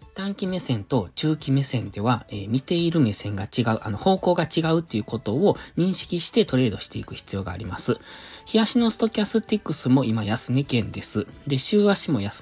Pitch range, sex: 105-155 Hz, male